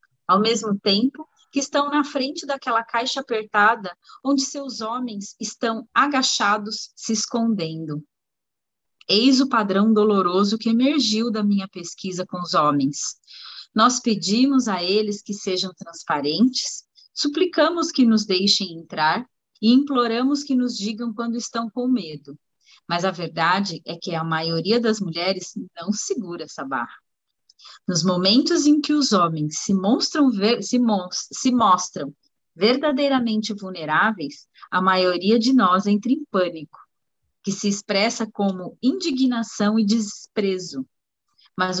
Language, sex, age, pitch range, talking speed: Portuguese, female, 30-49, 185-255 Hz, 135 wpm